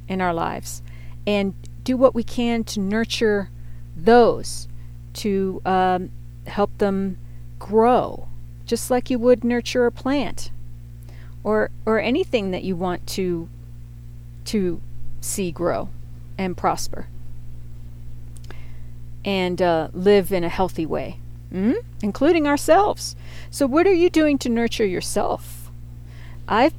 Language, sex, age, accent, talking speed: English, female, 40-59, American, 120 wpm